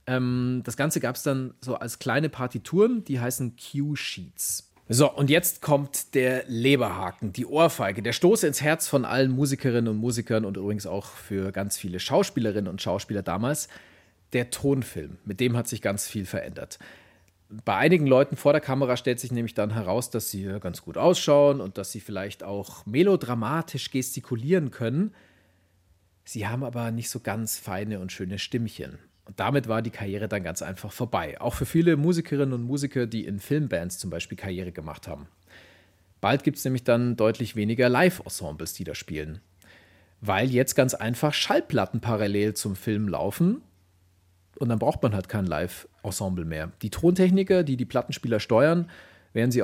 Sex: male